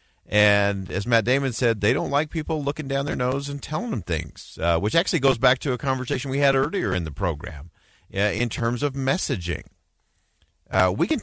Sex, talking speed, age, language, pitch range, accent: male, 210 wpm, 50-69, English, 90-135 Hz, American